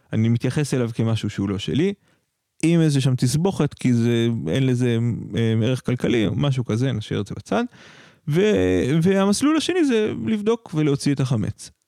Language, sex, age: Hebrew, male, 30-49